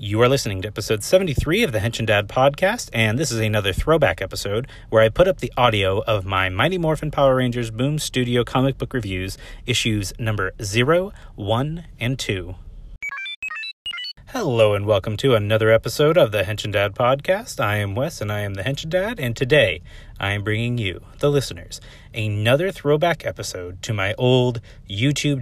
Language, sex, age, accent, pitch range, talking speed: English, male, 30-49, American, 105-140 Hz, 185 wpm